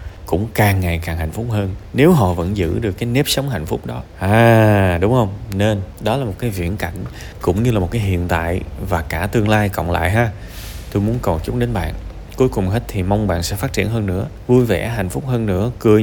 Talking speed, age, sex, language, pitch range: 245 wpm, 20-39, male, Vietnamese, 95-135 Hz